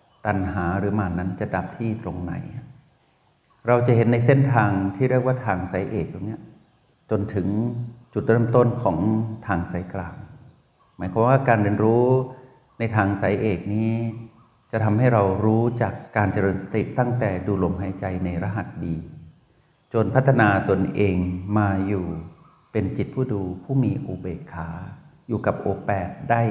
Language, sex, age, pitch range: Thai, male, 60-79, 95-120 Hz